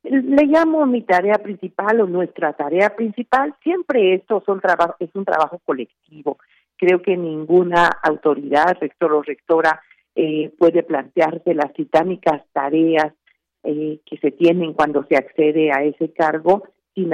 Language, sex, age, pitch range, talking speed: Spanish, female, 50-69, 165-205 Hz, 135 wpm